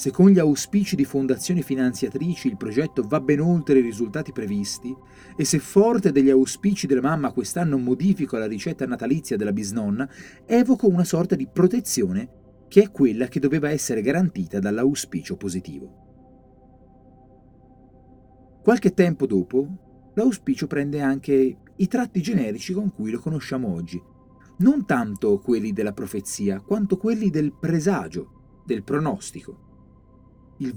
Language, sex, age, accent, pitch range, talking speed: Italian, male, 30-49, native, 125-185 Hz, 135 wpm